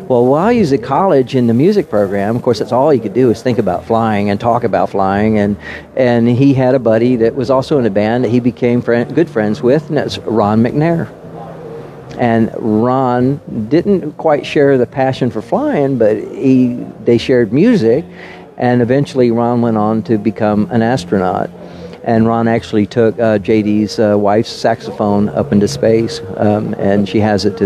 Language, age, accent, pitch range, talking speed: English, 50-69, American, 110-135 Hz, 195 wpm